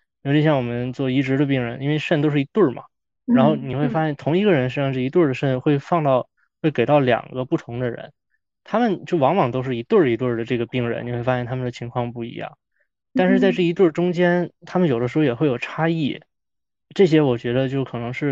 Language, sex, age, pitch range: Chinese, male, 20-39, 125-150 Hz